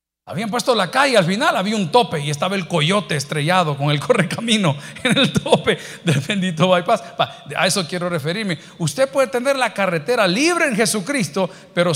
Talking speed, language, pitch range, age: 180 wpm, Spanish, 135-200 Hz, 50-69